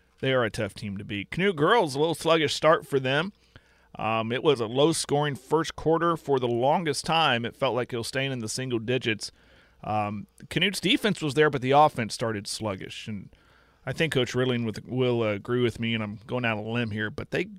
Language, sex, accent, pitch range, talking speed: English, male, American, 115-155 Hz, 220 wpm